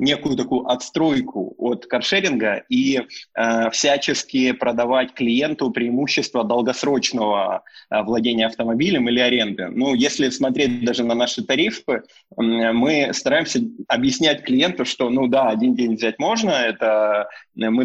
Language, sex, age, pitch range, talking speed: Russian, male, 20-39, 115-150 Hz, 120 wpm